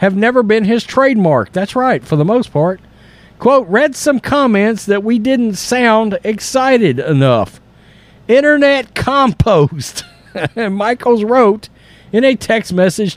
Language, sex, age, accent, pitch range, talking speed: English, male, 50-69, American, 150-230 Hz, 130 wpm